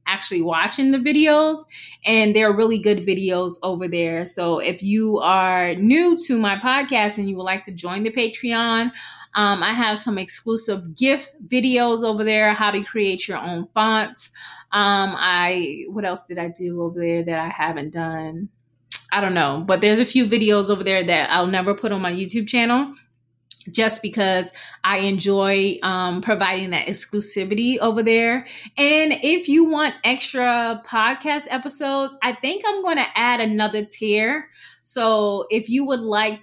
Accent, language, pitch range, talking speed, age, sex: American, English, 185-230 Hz, 170 wpm, 20-39, female